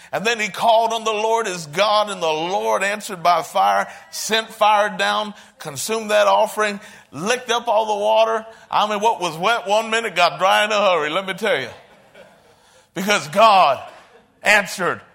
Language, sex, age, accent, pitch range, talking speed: English, male, 50-69, American, 205-245 Hz, 180 wpm